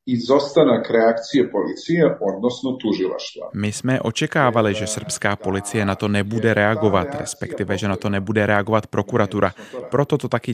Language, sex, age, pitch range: Czech, male, 30-49, 105-125 Hz